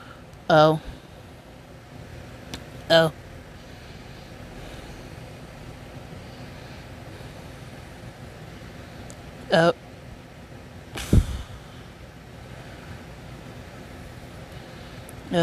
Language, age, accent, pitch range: English, 30-49, American, 130-190 Hz